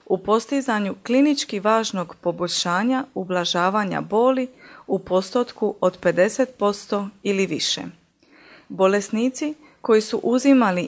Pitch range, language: 185-255 Hz, Croatian